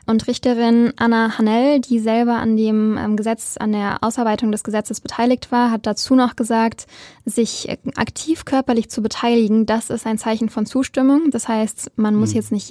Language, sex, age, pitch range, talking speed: German, female, 10-29, 220-250 Hz, 175 wpm